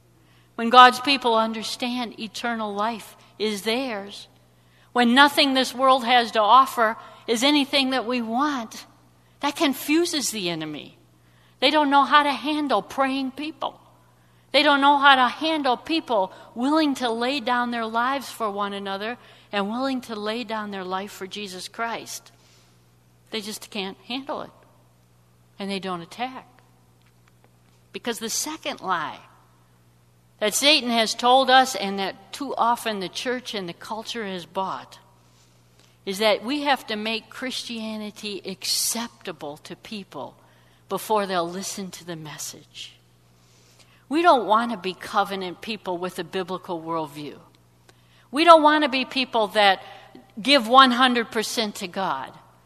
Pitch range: 175-255 Hz